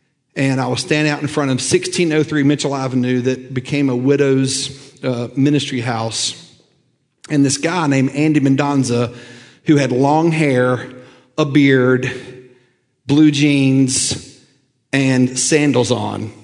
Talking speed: 130 wpm